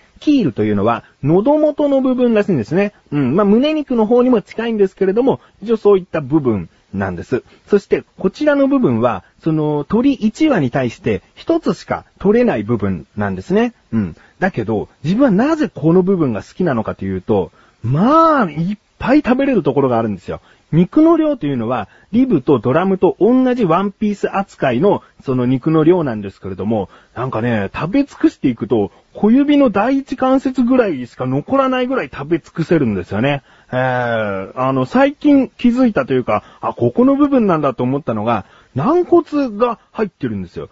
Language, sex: Japanese, male